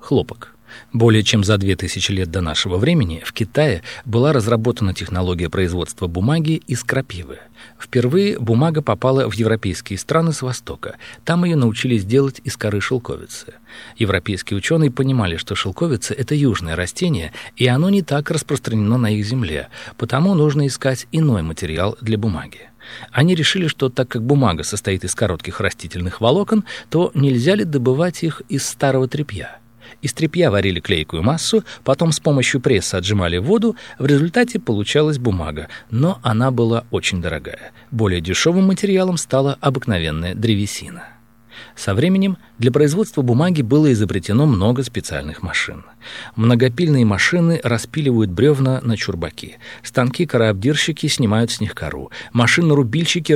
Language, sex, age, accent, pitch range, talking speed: Russian, male, 40-59, native, 100-150 Hz, 140 wpm